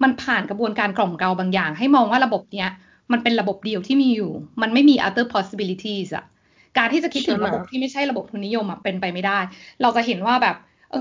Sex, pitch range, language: female, 195-260 Hz, Thai